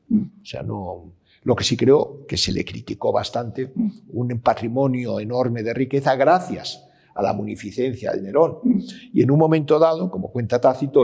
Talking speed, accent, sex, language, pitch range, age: 170 wpm, Spanish, male, Spanish, 125-180 Hz, 50-69